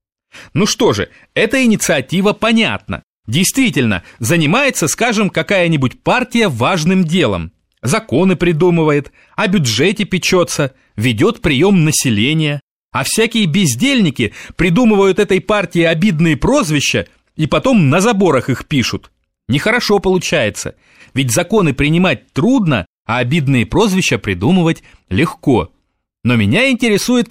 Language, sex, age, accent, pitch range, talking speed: Russian, male, 30-49, native, 135-205 Hz, 110 wpm